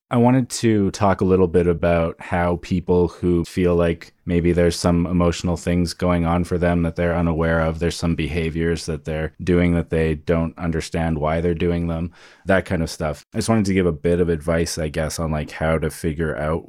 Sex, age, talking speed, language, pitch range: male, 20-39, 220 wpm, English, 80-95 Hz